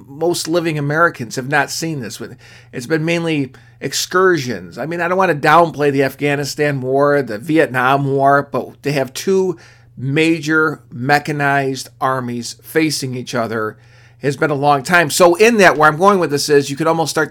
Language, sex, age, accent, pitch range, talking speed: English, male, 40-59, American, 130-165 Hz, 180 wpm